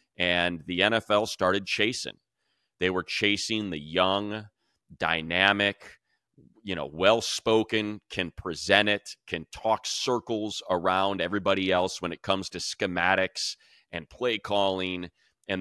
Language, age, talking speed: English, 30-49, 125 wpm